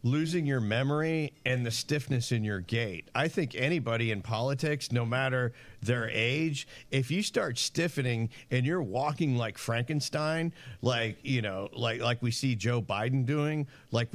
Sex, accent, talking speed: male, American, 160 wpm